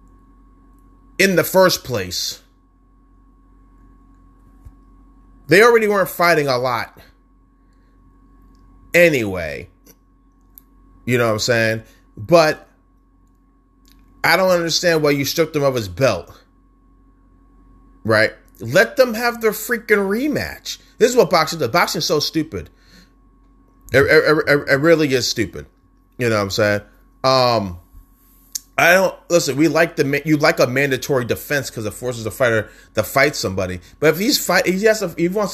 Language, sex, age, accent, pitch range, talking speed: English, male, 30-49, American, 110-170 Hz, 145 wpm